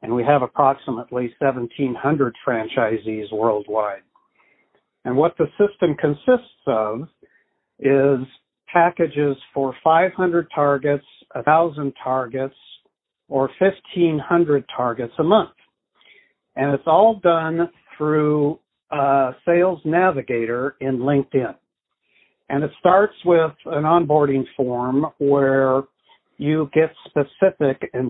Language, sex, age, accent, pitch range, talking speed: English, male, 60-79, American, 135-160 Hz, 100 wpm